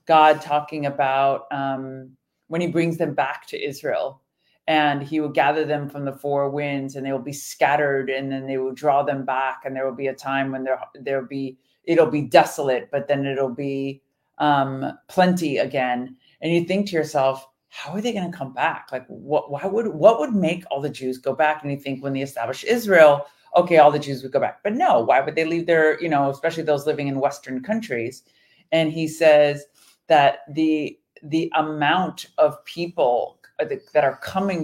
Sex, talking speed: female, 200 wpm